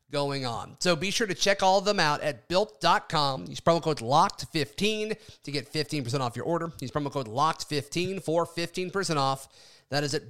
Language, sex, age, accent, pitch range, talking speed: English, male, 30-49, American, 145-185 Hz, 190 wpm